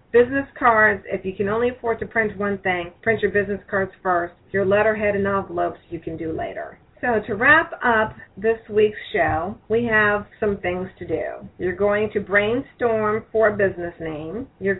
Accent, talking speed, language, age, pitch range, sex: American, 185 wpm, English, 40-59, 190-235 Hz, female